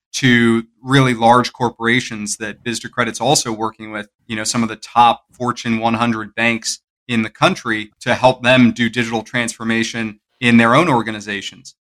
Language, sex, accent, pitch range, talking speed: English, male, American, 115-135 Hz, 160 wpm